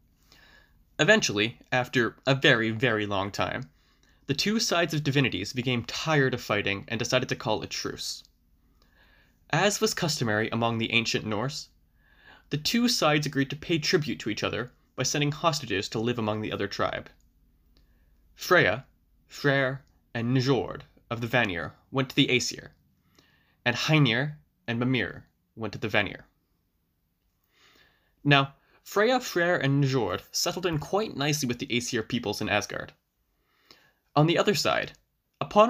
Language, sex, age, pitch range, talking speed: English, male, 20-39, 105-150 Hz, 145 wpm